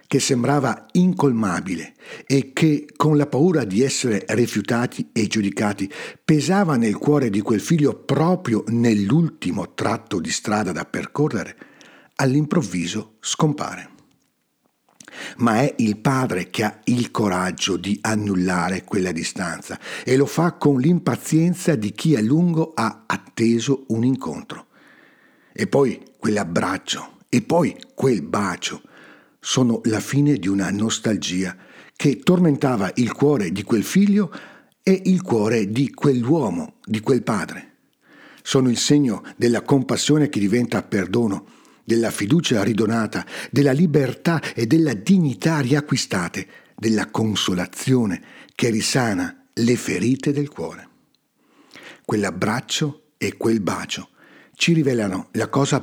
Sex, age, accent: male, 60-79, native